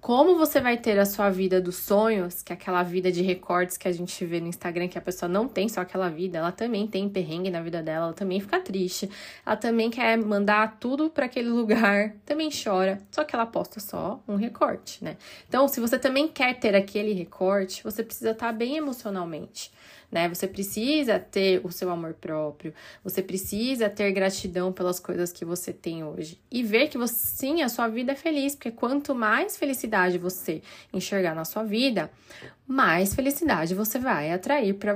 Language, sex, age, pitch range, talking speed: Portuguese, female, 20-39, 180-225 Hz, 195 wpm